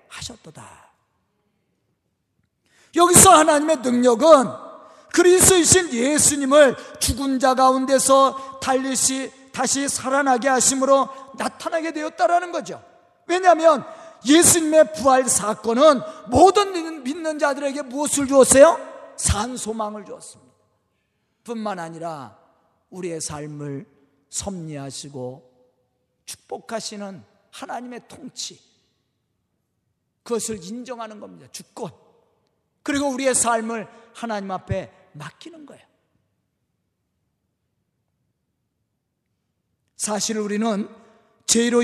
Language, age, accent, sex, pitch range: Korean, 40-59, native, male, 230-315 Hz